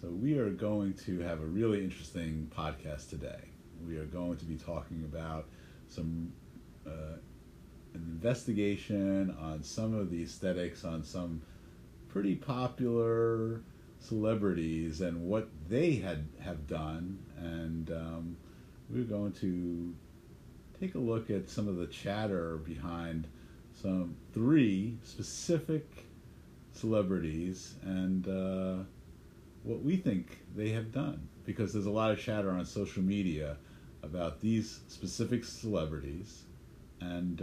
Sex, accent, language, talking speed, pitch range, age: male, American, English, 125 wpm, 80-100 Hz, 50-69